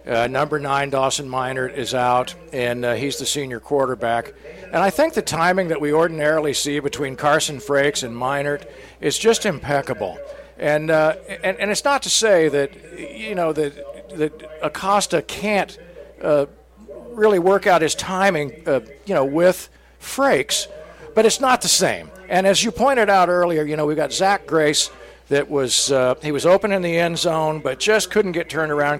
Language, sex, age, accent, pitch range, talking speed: English, male, 50-69, American, 145-200 Hz, 185 wpm